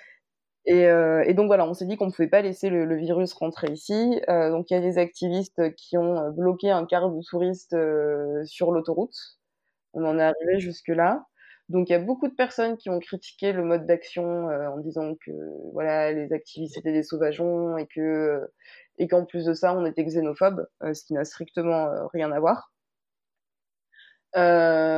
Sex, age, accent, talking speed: female, 20-39, French, 200 wpm